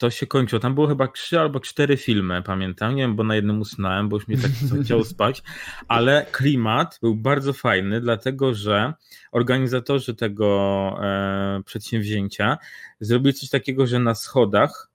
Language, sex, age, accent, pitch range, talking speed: Polish, male, 20-39, native, 110-130 Hz, 160 wpm